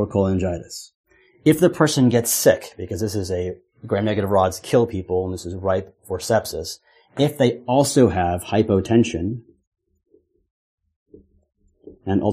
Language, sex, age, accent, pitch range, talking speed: English, male, 30-49, American, 95-125 Hz, 125 wpm